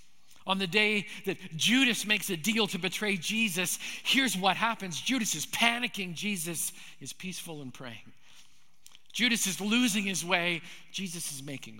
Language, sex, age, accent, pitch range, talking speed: English, male, 50-69, American, 170-215 Hz, 155 wpm